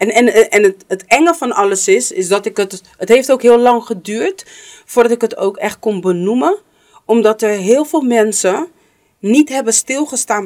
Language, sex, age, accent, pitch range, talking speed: English, female, 40-59, Dutch, 175-235 Hz, 195 wpm